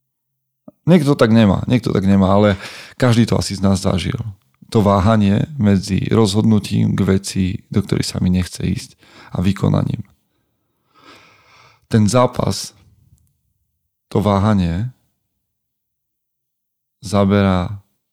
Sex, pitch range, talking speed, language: male, 95-115 Hz, 105 wpm, Slovak